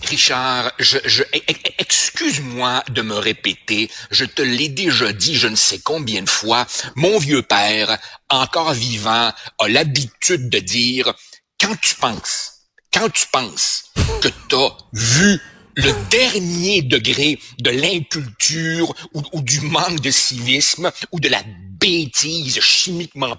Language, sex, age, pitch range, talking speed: French, male, 60-79, 130-190 Hz, 135 wpm